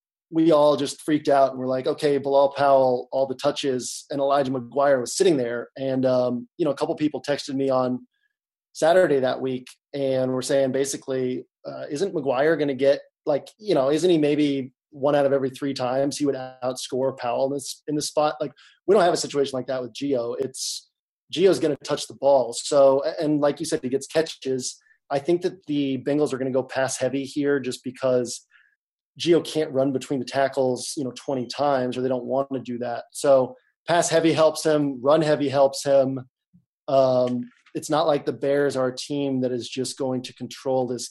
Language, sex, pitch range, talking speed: English, male, 130-150 Hz, 215 wpm